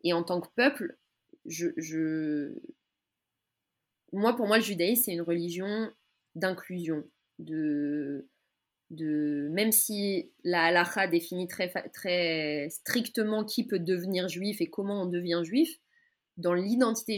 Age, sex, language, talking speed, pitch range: 20-39, female, French, 130 wpm, 170-225 Hz